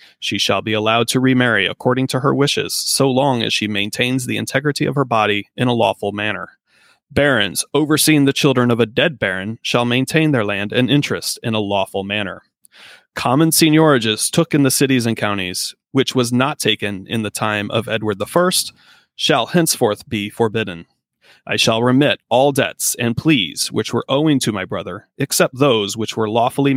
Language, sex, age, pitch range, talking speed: English, male, 30-49, 110-145 Hz, 185 wpm